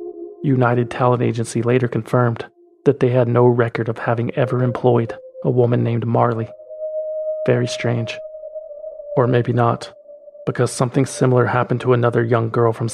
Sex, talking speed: male, 150 wpm